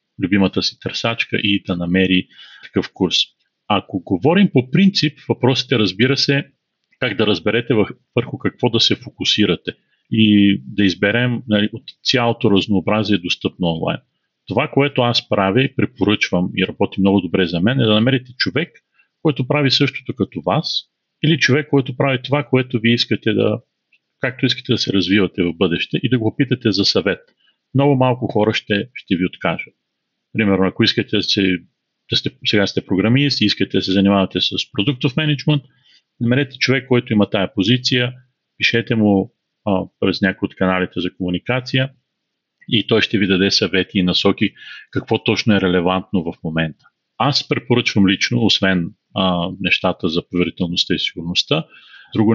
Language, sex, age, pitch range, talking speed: Bulgarian, male, 40-59, 95-125 Hz, 160 wpm